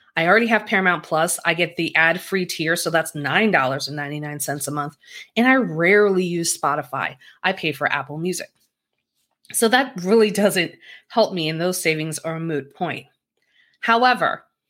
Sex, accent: female, American